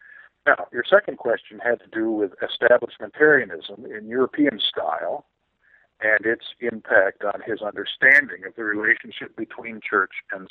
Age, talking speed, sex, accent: 50-69, 135 wpm, male, American